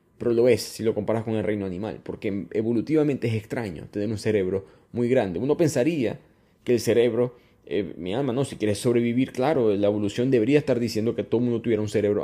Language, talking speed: Spanish, 215 wpm